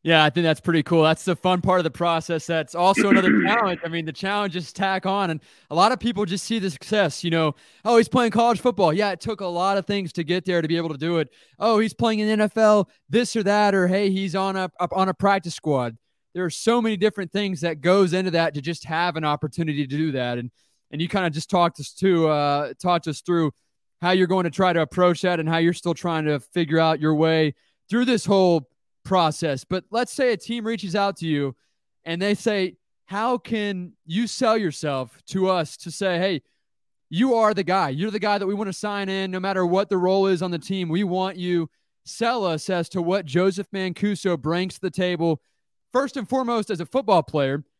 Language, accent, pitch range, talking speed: English, American, 165-200 Hz, 240 wpm